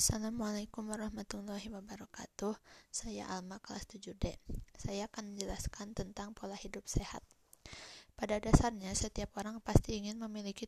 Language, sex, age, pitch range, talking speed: Indonesian, female, 20-39, 195-215 Hz, 120 wpm